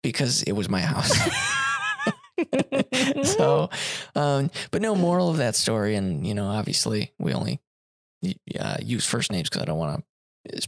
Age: 20-39